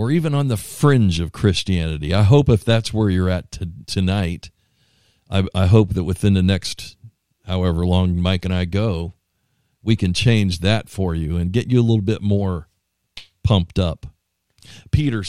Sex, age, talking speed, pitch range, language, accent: male, 50-69, 175 wpm, 90-110 Hz, English, American